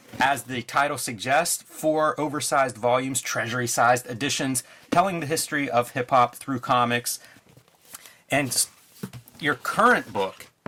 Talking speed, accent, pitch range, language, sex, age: 110 wpm, American, 120-155 Hz, English, male, 30-49